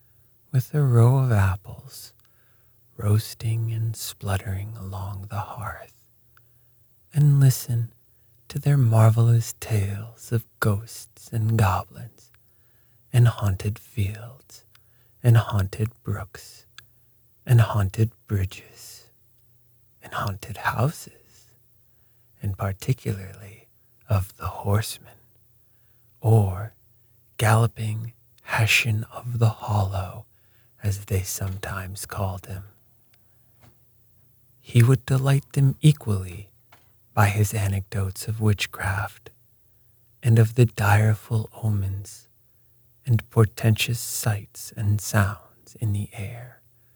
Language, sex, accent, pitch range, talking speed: English, male, American, 105-120 Hz, 90 wpm